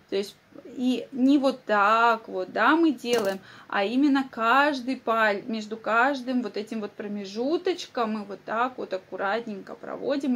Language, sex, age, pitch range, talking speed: Russian, female, 20-39, 220-275 Hz, 150 wpm